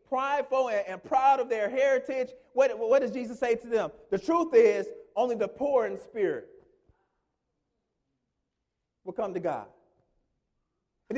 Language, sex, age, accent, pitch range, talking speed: English, male, 40-59, American, 220-290 Hz, 140 wpm